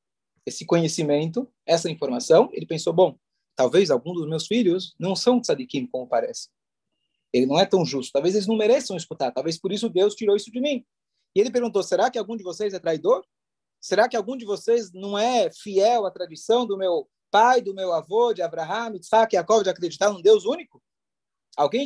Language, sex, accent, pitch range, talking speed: Portuguese, male, Brazilian, 170-235 Hz, 195 wpm